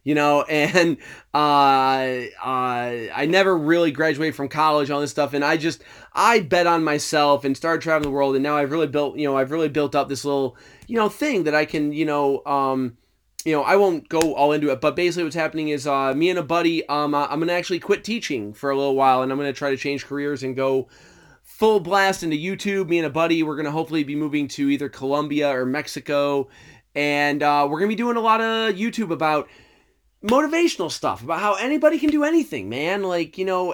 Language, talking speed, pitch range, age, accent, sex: English, 230 wpm, 140-180 Hz, 30-49, American, male